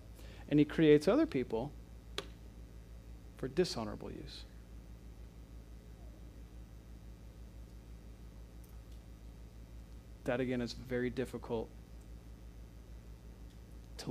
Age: 40-59